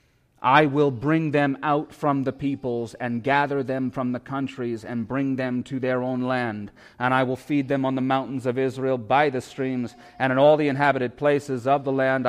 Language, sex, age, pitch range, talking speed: English, male, 30-49, 110-140 Hz, 210 wpm